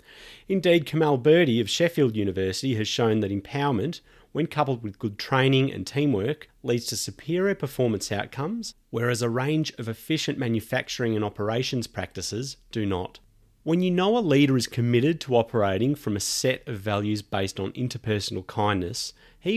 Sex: male